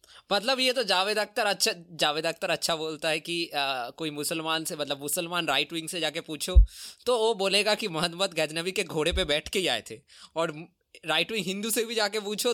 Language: Hindi